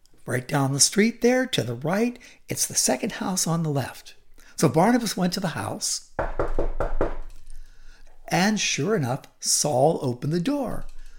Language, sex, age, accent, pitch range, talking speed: English, male, 60-79, American, 130-215 Hz, 150 wpm